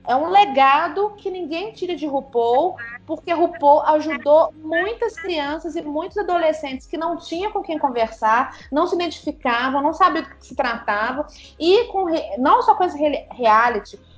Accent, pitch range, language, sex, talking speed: Brazilian, 250-330 Hz, Portuguese, female, 155 wpm